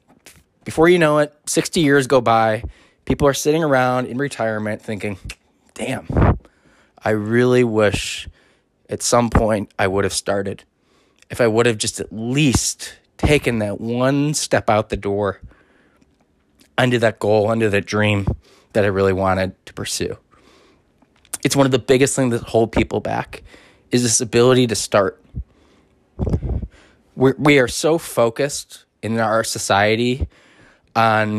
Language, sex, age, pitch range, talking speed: English, male, 20-39, 105-130 Hz, 145 wpm